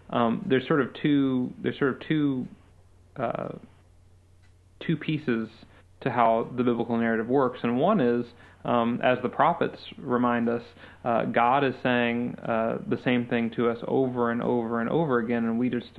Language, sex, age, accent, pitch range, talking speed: English, male, 30-49, American, 115-130 Hz, 180 wpm